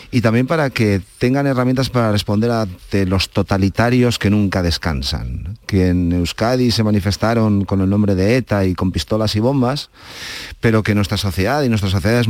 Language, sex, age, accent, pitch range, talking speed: Spanish, male, 40-59, Spanish, 90-110 Hz, 180 wpm